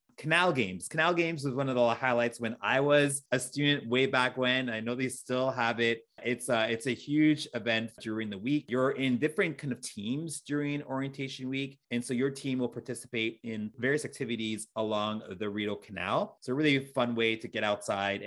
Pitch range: 110-140 Hz